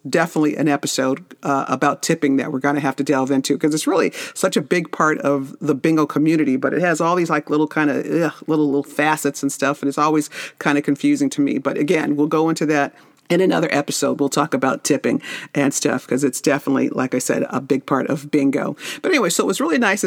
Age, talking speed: 50-69, 240 wpm